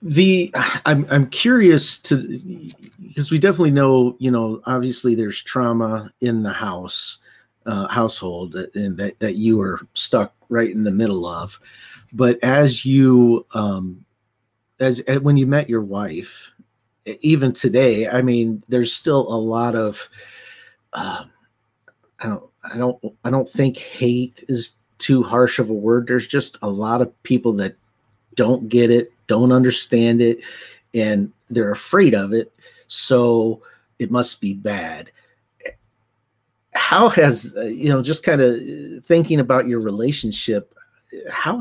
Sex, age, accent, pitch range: male, 40-59, American, 110-130 Hz